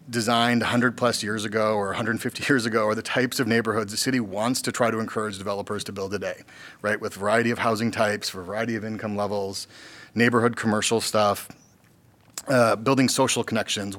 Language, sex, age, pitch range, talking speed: English, male, 30-49, 105-120 Hz, 195 wpm